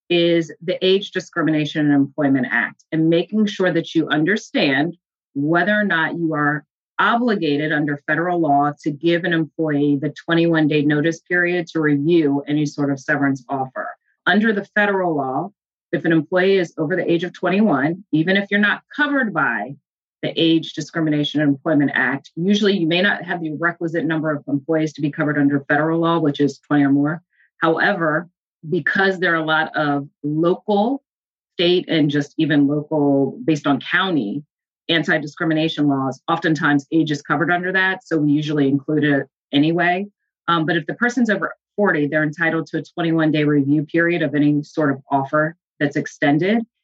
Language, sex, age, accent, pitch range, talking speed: English, female, 30-49, American, 145-175 Hz, 170 wpm